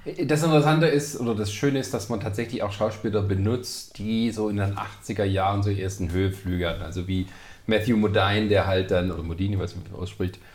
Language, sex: German, male